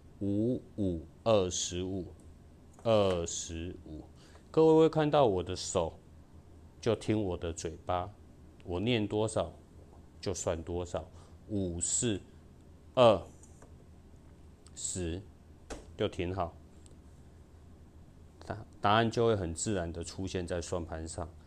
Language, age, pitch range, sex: Chinese, 30-49, 80-105 Hz, male